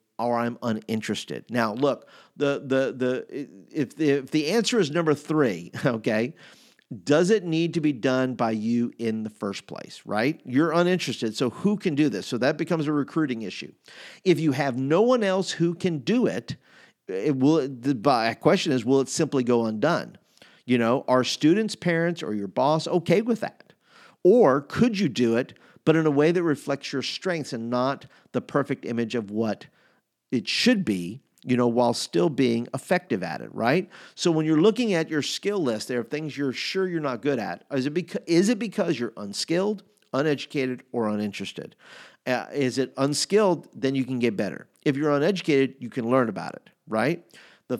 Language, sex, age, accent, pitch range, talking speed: English, male, 50-69, American, 120-160 Hz, 190 wpm